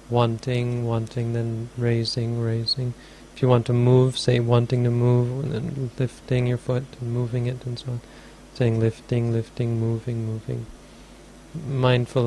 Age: 40-59